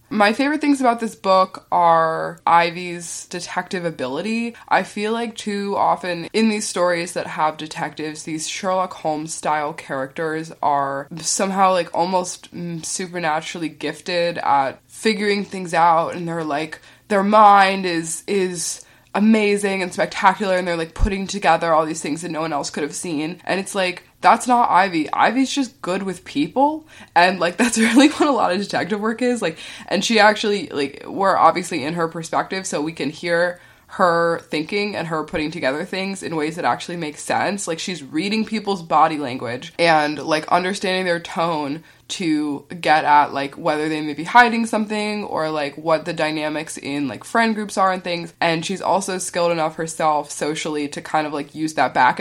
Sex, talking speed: female, 180 wpm